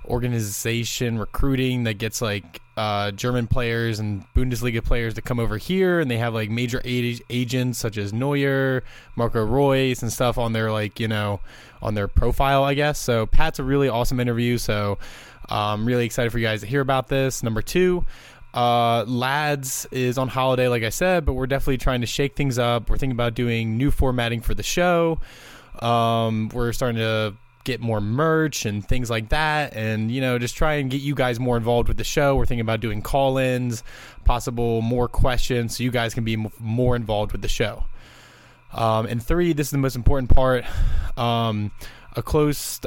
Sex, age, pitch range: male, 20-39, 115-130 Hz